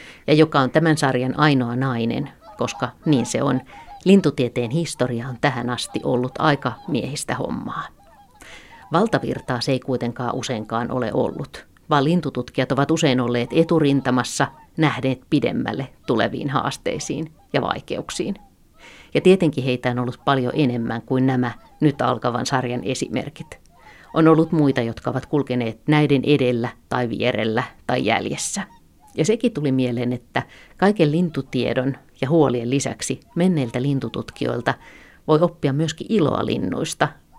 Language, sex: Finnish, female